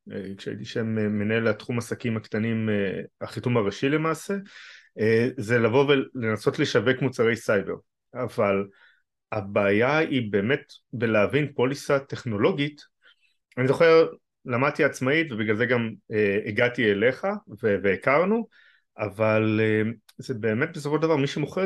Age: 30-49